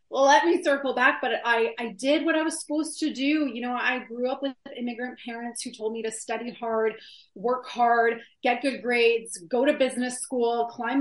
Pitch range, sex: 215-255 Hz, female